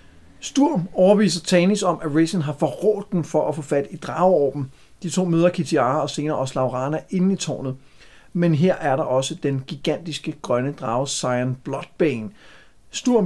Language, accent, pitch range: Danish, native, 135-180 Hz